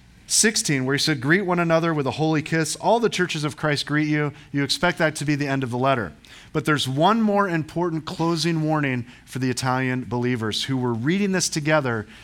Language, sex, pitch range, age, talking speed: English, male, 125-165 Hz, 40-59, 215 wpm